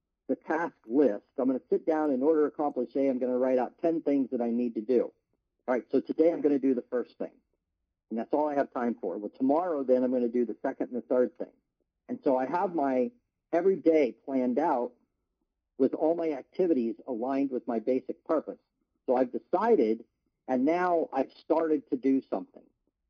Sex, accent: male, American